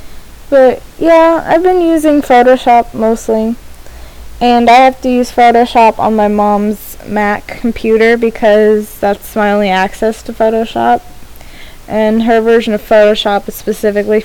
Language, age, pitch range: English, 10-29, 200-245 Hz